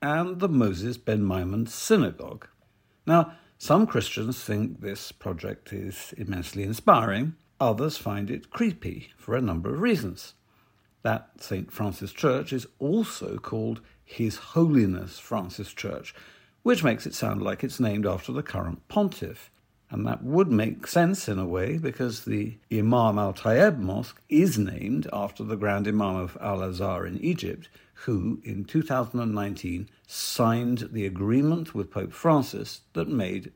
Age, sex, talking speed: 60-79, male, 145 wpm